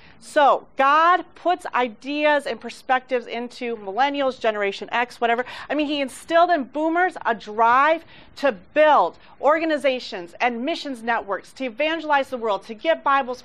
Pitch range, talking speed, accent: 240-325 Hz, 145 wpm, American